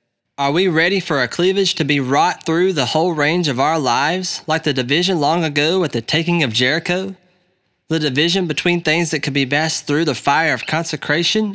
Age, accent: 20-39, American